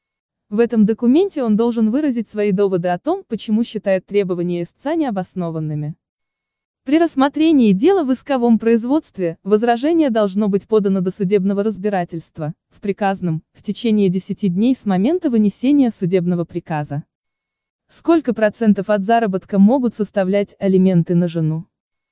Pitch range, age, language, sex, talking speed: 190-245 Hz, 20-39, Russian, female, 130 wpm